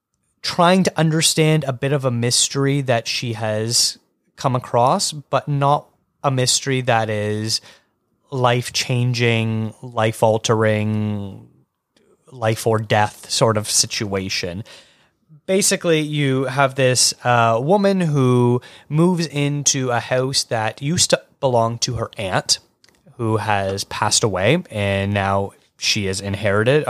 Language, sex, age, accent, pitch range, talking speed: English, male, 30-49, American, 110-140 Hz, 115 wpm